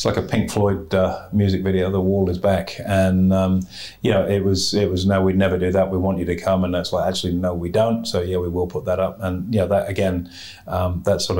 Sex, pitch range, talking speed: male, 95-100 Hz, 280 wpm